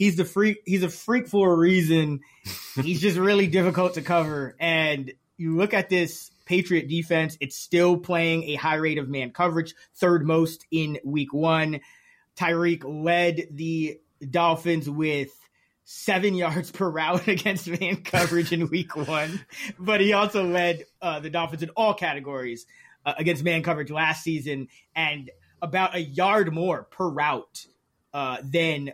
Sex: male